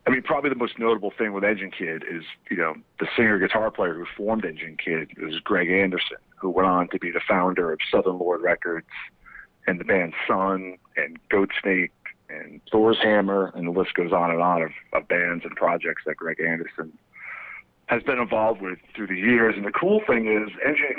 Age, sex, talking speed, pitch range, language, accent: 40-59, male, 205 wpm, 90-115 Hz, English, American